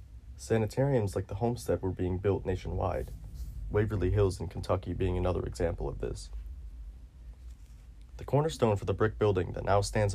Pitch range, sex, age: 85-105 Hz, male, 30-49